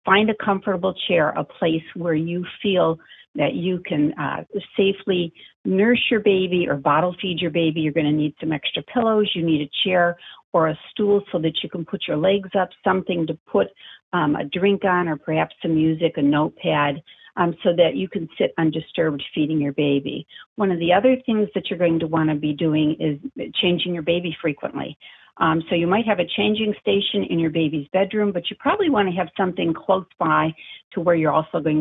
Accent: American